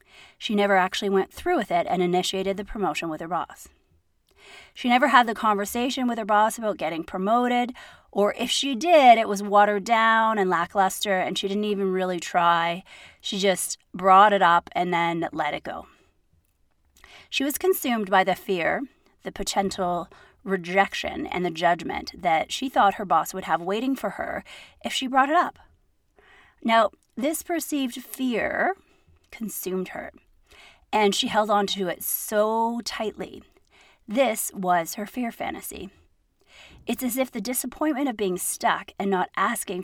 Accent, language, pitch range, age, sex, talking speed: American, English, 190-255 Hz, 30-49, female, 165 wpm